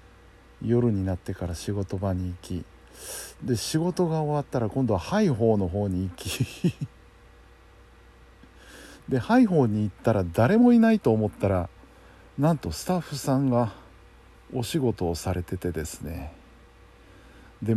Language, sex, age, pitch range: Japanese, male, 50-69, 95-140 Hz